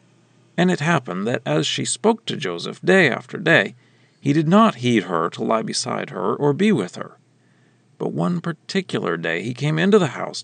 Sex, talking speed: male, 195 wpm